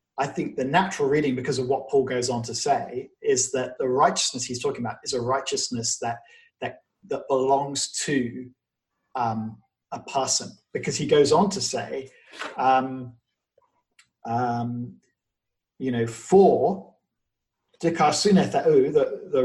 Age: 40-59